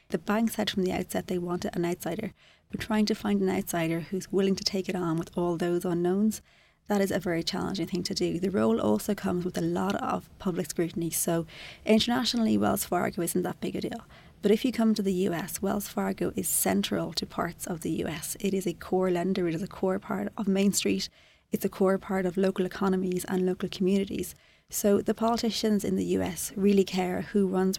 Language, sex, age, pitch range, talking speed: English, female, 30-49, 175-200 Hz, 220 wpm